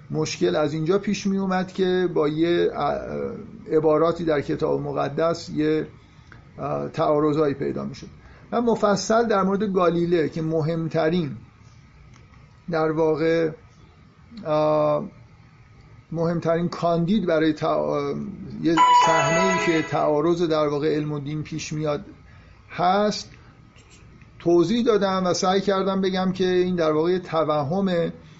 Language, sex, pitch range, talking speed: Persian, male, 155-180 Hz, 115 wpm